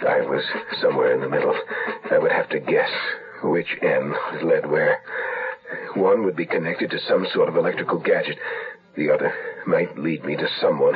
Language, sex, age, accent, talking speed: English, male, 60-79, American, 175 wpm